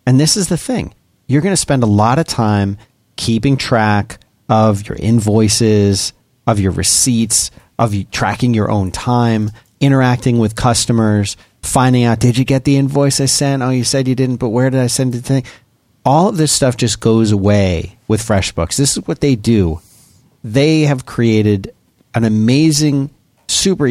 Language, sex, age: English, male, 40-59